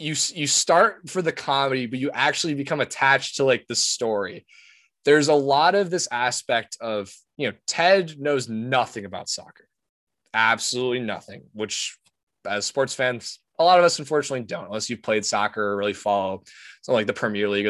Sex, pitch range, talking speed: male, 115-145 Hz, 180 wpm